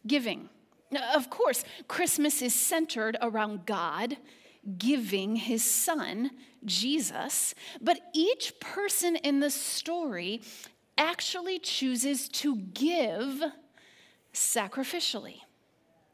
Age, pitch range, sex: 30-49, 245-340 Hz, female